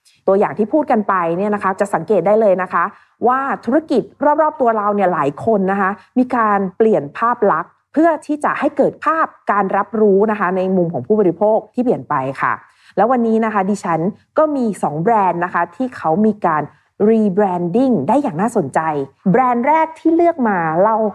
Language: Thai